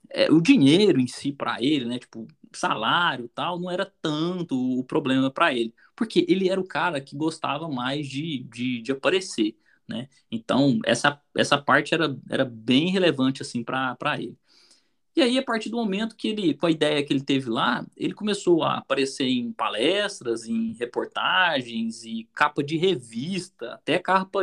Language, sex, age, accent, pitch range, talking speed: Portuguese, male, 20-39, Brazilian, 135-220 Hz, 175 wpm